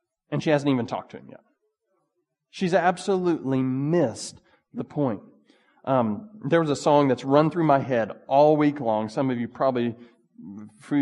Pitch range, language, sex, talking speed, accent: 135-215 Hz, English, male, 170 wpm, American